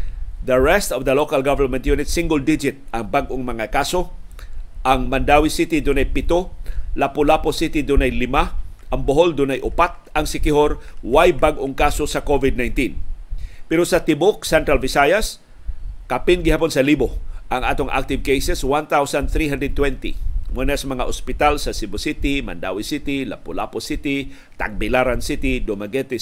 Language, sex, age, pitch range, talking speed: Filipino, male, 50-69, 125-150 Hz, 135 wpm